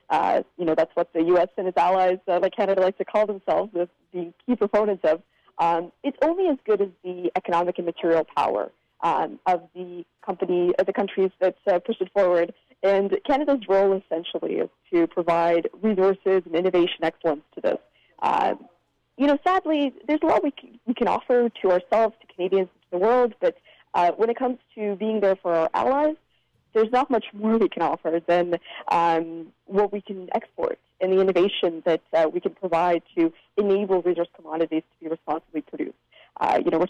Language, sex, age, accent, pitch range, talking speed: English, female, 20-39, American, 175-220 Hz, 195 wpm